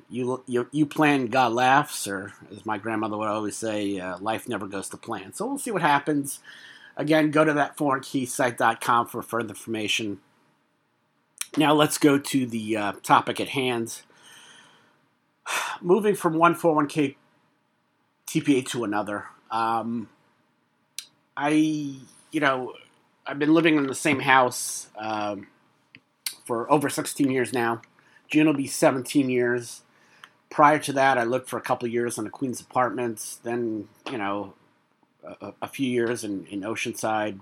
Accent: American